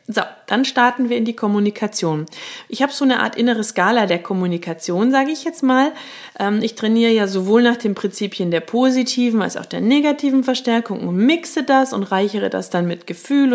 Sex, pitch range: female, 195-245 Hz